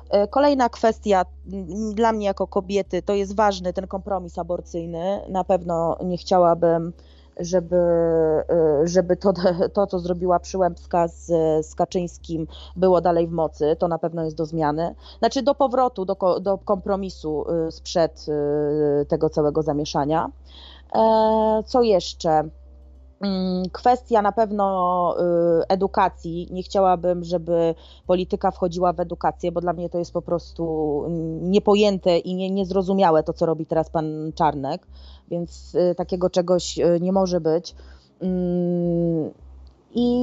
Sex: female